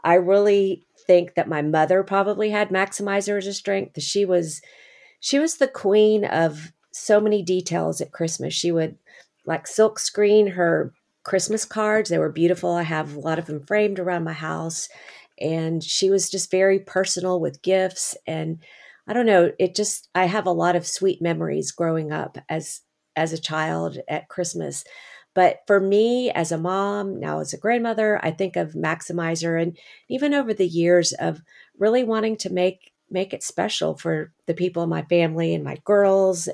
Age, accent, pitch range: 40-59, American, 165-200 Hz